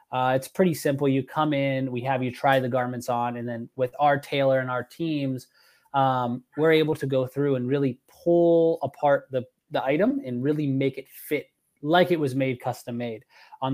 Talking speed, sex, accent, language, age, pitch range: 200 wpm, male, American, English, 20-39, 125-150 Hz